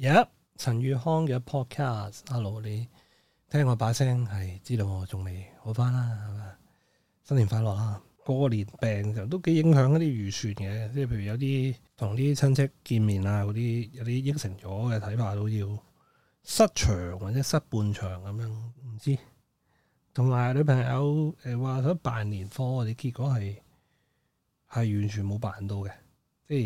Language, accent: Chinese, native